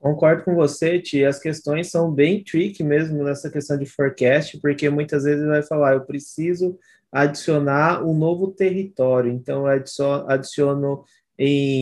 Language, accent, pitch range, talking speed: Portuguese, Brazilian, 145-170 Hz, 145 wpm